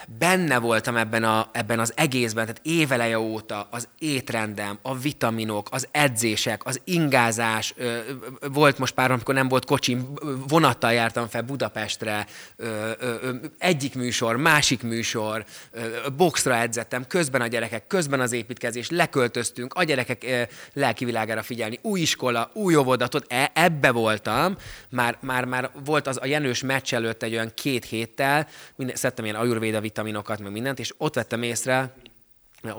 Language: Hungarian